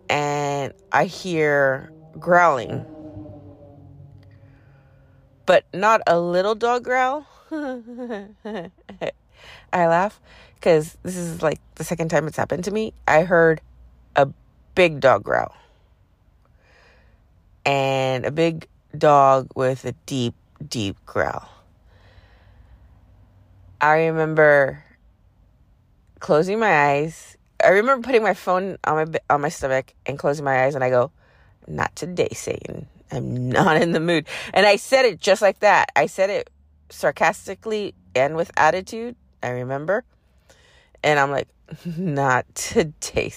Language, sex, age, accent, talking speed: English, female, 30-49, American, 125 wpm